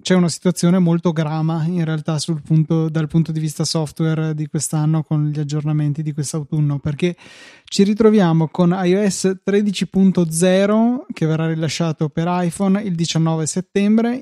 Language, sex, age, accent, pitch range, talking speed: Italian, male, 20-39, native, 160-185 Hz, 150 wpm